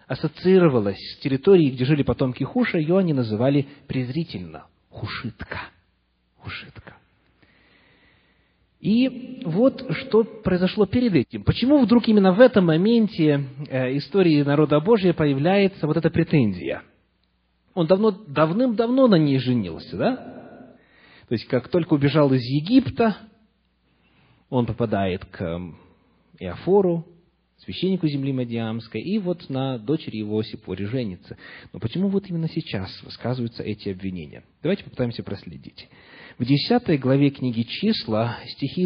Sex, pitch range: male, 115-175 Hz